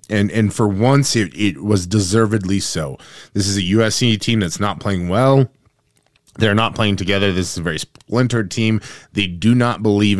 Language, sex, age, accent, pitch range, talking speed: English, male, 20-39, American, 90-115 Hz, 190 wpm